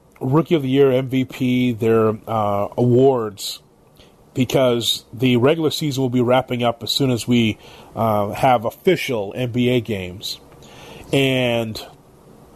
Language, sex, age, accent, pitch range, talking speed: English, male, 30-49, American, 115-135 Hz, 125 wpm